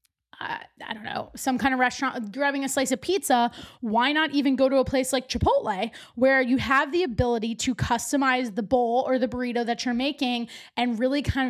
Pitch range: 240-280 Hz